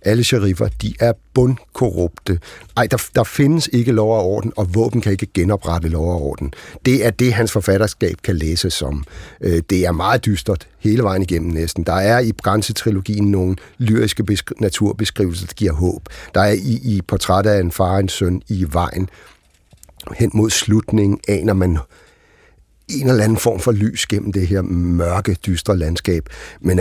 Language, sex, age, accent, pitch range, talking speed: Danish, male, 60-79, native, 85-105 Hz, 180 wpm